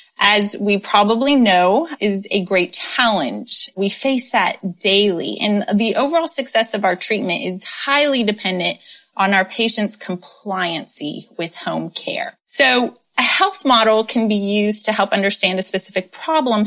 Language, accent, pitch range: English, American, 195-250 Hz